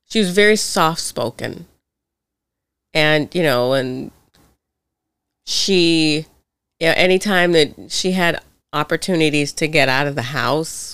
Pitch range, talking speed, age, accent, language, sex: 140-200 Hz, 120 wpm, 30-49, American, English, female